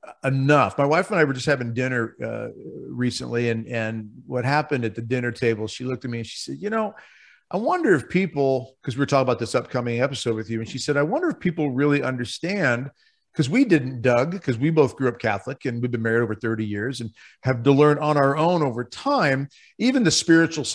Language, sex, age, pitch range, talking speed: English, male, 40-59, 120-150 Hz, 230 wpm